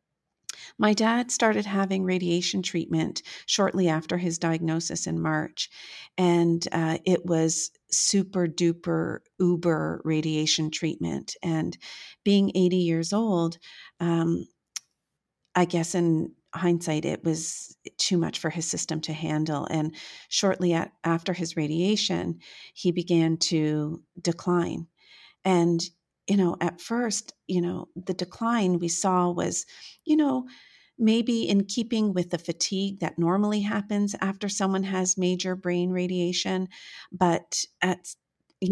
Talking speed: 125 wpm